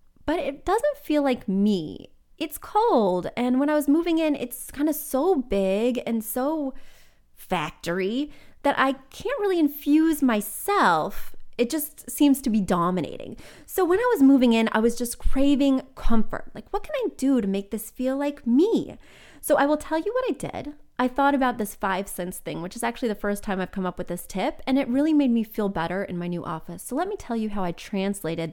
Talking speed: 215 wpm